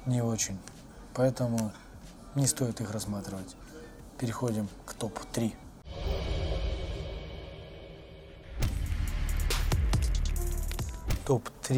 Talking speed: 55 wpm